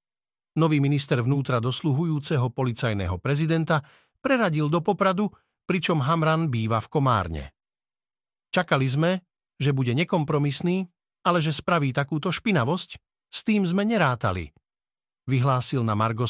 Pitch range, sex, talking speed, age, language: 130-175 Hz, male, 115 wpm, 50-69, Slovak